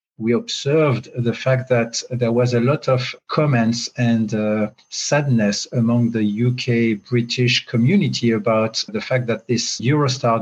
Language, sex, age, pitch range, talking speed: English, male, 50-69, 115-135 Hz, 140 wpm